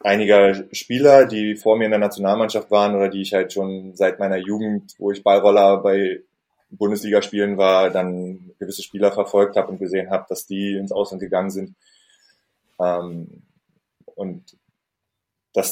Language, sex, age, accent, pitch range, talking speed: German, male, 20-39, German, 95-110 Hz, 155 wpm